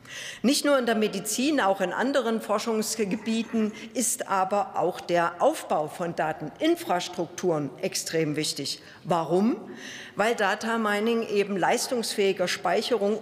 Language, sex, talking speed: German, female, 110 wpm